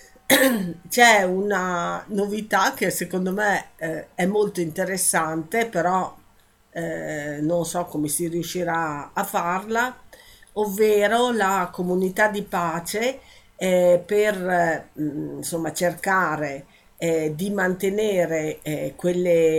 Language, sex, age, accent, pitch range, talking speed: Italian, female, 50-69, native, 160-200 Hz, 85 wpm